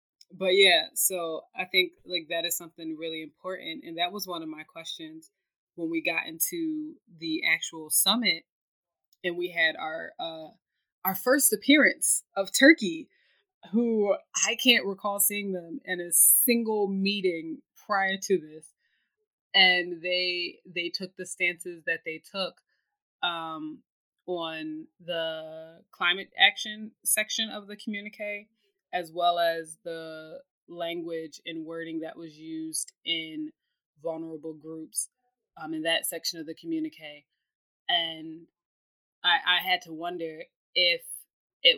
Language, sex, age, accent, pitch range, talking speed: English, female, 20-39, American, 165-215 Hz, 135 wpm